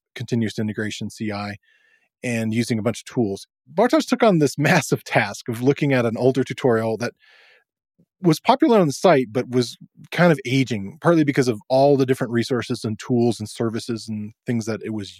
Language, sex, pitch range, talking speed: English, male, 110-145 Hz, 190 wpm